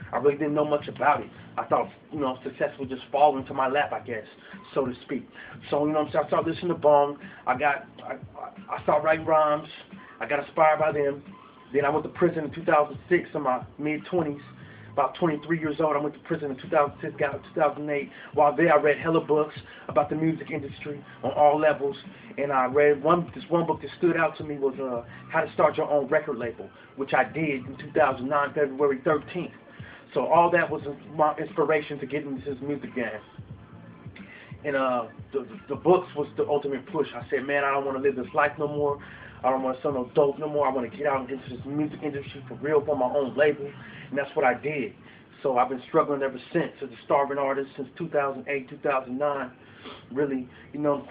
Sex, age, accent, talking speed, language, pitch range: male, 30-49, American, 215 wpm, English, 135-150 Hz